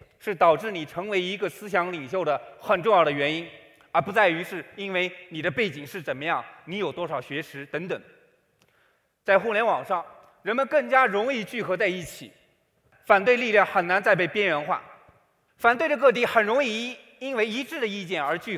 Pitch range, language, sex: 170-235 Hz, Chinese, male